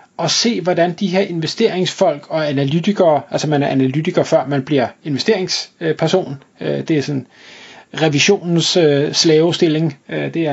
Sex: male